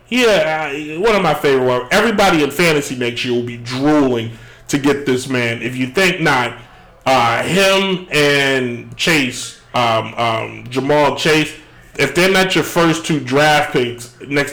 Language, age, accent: English, 30-49, American